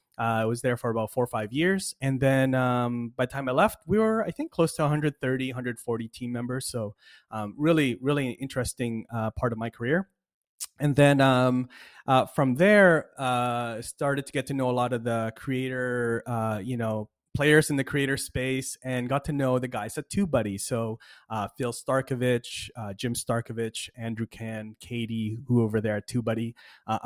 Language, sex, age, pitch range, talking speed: English, male, 30-49, 115-140 Hz, 195 wpm